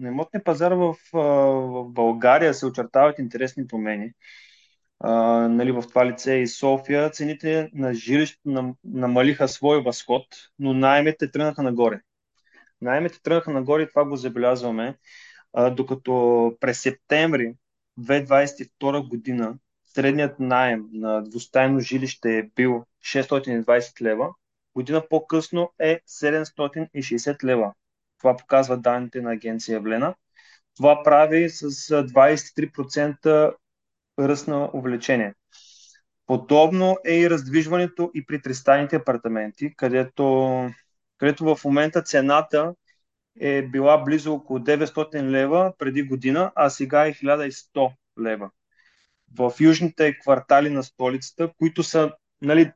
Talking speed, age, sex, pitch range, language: 115 wpm, 20-39, male, 125-150 Hz, Bulgarian